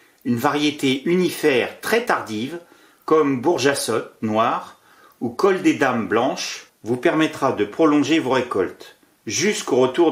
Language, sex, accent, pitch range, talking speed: French, male, French, 125-185 Hz, 125 wpm